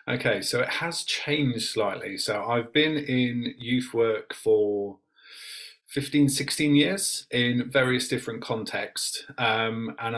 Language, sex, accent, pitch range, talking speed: English, male, British, 110-135 Hz, 125 wpm